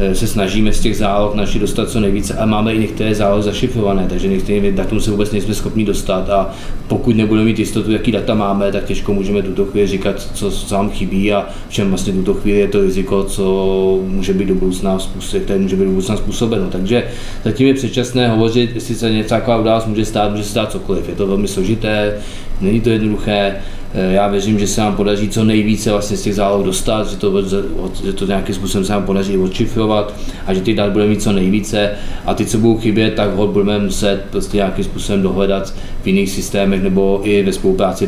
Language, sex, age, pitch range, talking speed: Czech, male, 20-39, 95-105 Hz, 200 wpm